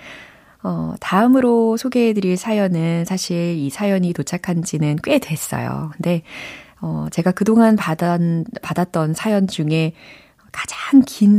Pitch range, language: 155-205 Hz, Korean